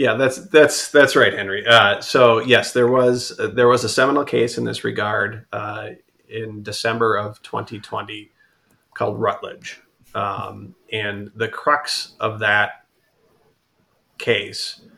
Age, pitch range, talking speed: 30-49, 105-120 Hz, 135 wpm